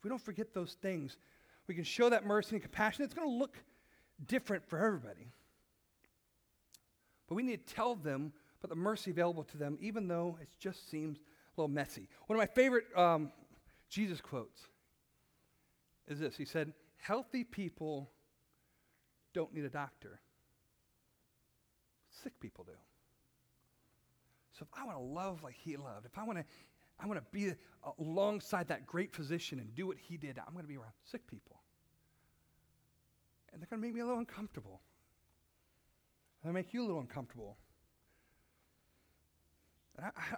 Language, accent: English, American